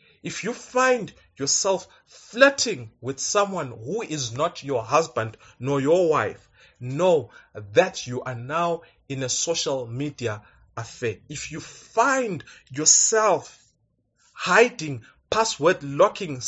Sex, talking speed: male, 115 wpm